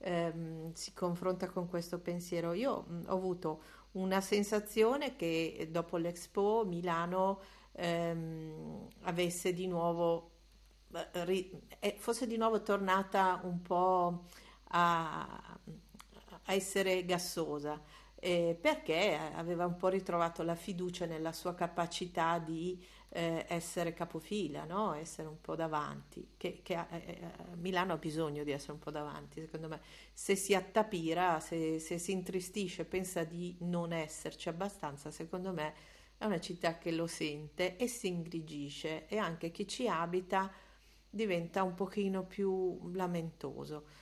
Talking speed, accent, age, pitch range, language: 130 wpm, native, 50-69, 165-190 Hz, Italian